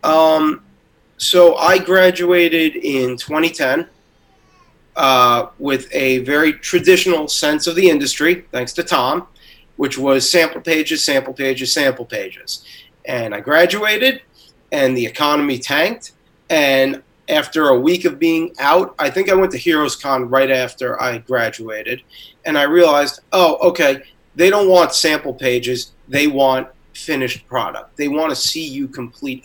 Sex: male